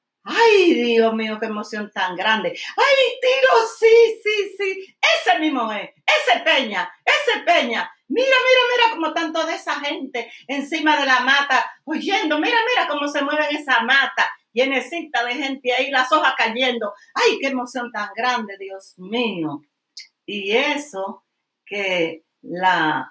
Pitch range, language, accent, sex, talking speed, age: 195-285 Hz, Spanish, American, female, 150 wpm, 50-69